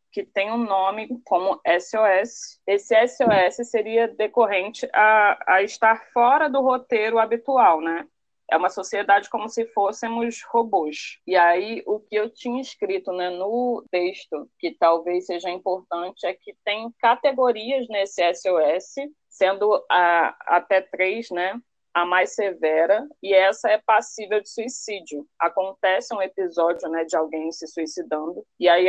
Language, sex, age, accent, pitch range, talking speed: Portuguese, female, 20-39, Brazilian, 180-235 Hz, 145 wpm